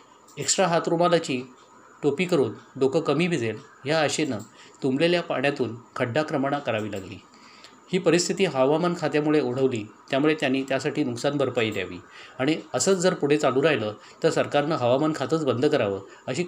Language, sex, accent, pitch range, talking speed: Marathi, male, native, 130-165 Hz, 140 wpm